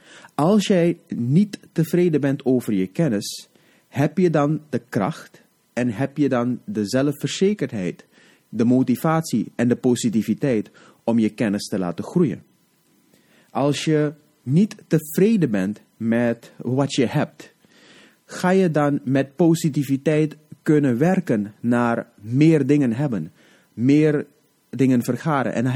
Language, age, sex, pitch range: Dutch, 30-49, male, 110-155 Hz